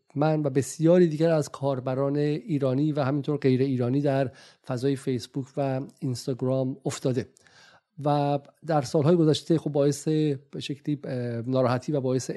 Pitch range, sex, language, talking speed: 135-160 Hz, male, Persian, 130 wpm